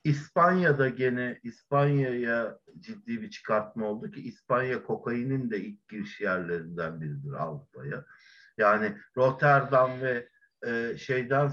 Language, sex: Turkish, male